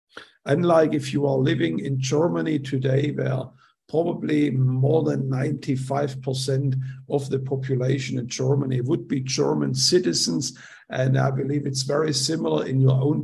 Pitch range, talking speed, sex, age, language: 130-145 Hz, 145 wpm, male, 50-69, English